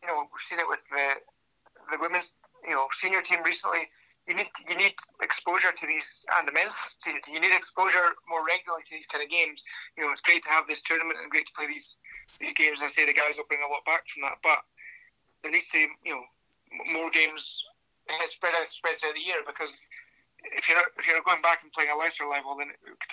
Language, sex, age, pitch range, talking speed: English, male, 30-49, 145-165 Hz, 235 wpm